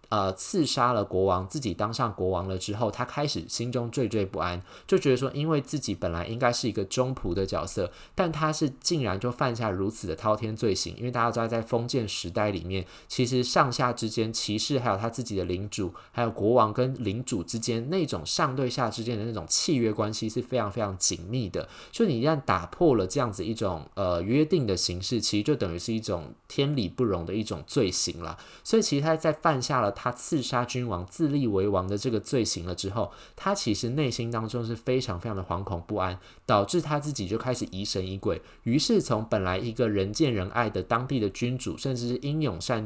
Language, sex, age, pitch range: Chinese, male, 20-39, 95-125 Hz